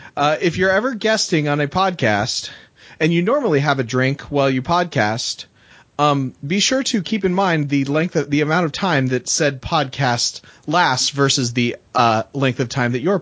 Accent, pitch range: American, 110-150 Hz